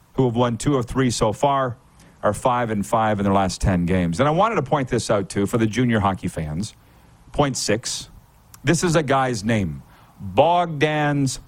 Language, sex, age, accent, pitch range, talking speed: English, male, 40-59, American, 110-135 Hz, 200 wpm